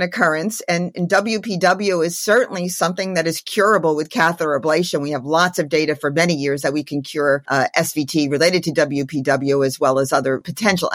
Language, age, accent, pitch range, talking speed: English, 50-69, American, 145-195 Hz, 190 wpm